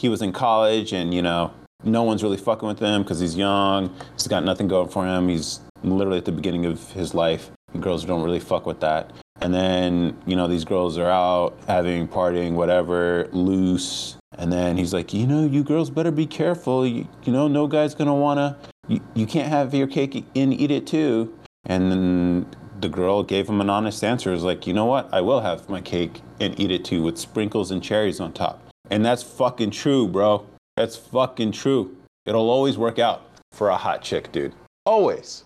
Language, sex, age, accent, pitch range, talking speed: English, male, 30-49, American, 90-115 Hz, 210 wpm